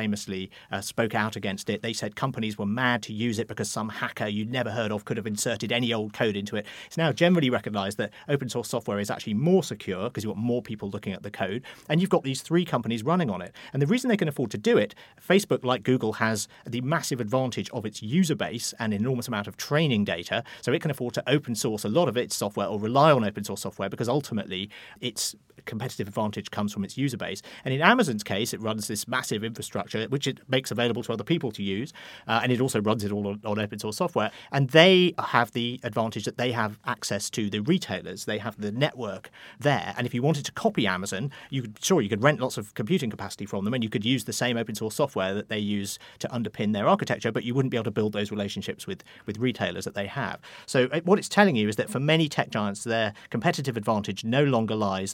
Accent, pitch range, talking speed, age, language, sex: British, 105-130 Hz, 245 wpm, 40-59, English, male